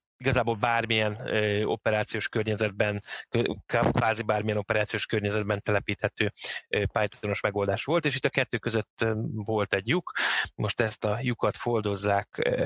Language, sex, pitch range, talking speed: Hungarian, male, 100-115 Hz, 120 wpm